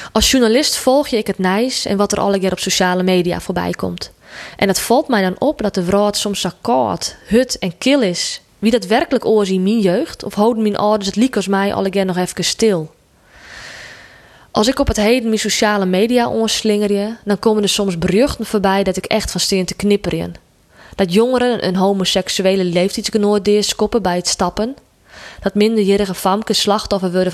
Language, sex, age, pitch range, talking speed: Dutch, female, 20-39, 185-225 Hz, 190 wpm